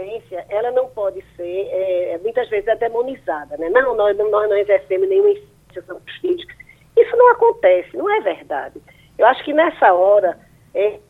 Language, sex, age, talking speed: Portuguese, female, 20-39, 160 wpm